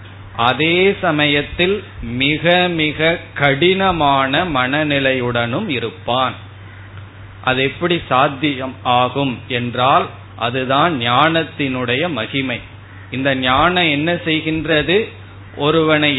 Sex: male